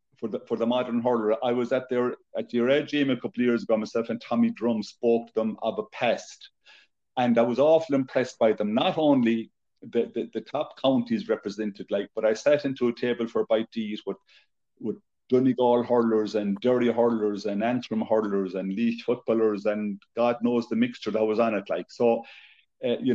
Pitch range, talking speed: 110-125 Hz, 215 wpm